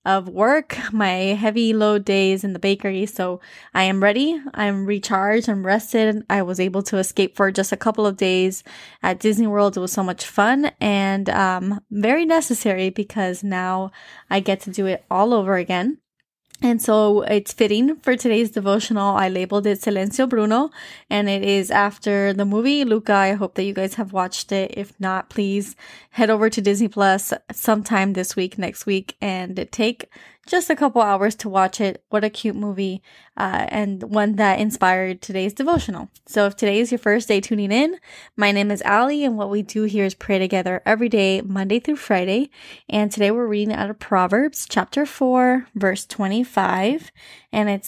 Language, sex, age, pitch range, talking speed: English, female, 20-39, 195-220 Hz, 185 wpm